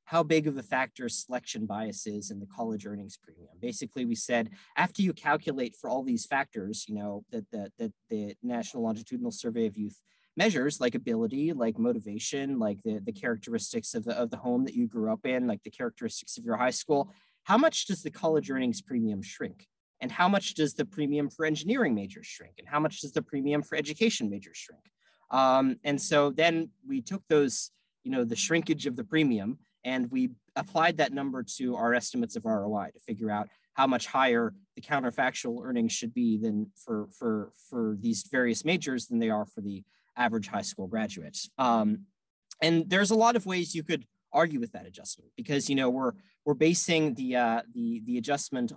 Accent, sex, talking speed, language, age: American, male, 200 wpm, English, 30-49